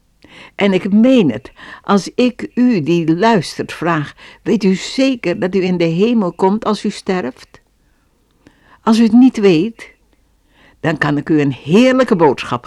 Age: 60-79